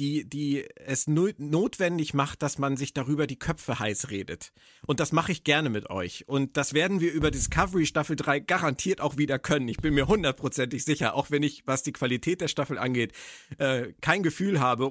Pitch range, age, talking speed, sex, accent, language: 120-155 Hz, 40-59, 195 wpm, male, German, German